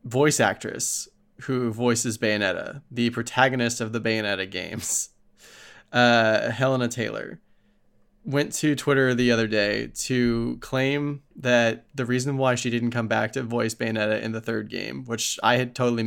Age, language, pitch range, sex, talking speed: 20-39, English, 110-125 Hz, male, 155 wpm